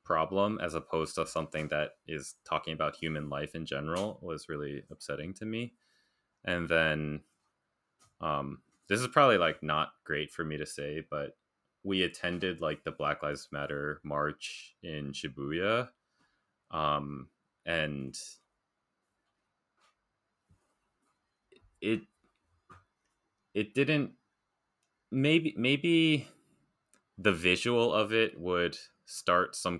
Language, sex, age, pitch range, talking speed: English, male, 20-39, 75-105 Hz, 115 wpm